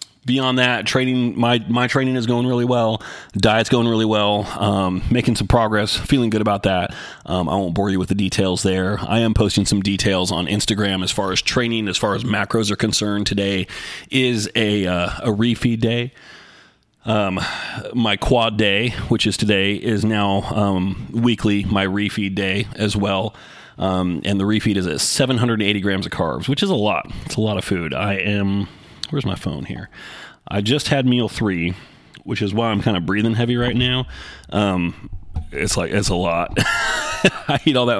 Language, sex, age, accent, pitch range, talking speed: English, male, 30-49, American, 100-120 Hz, 190 wpm